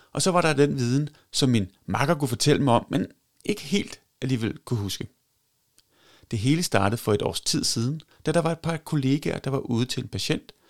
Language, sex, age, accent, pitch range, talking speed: Danish, male, 30-49, native, 105-140 Hz, 220 wpm